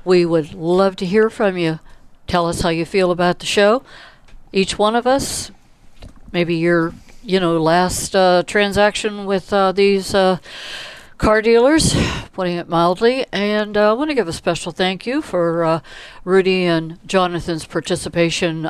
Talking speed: 165 wpm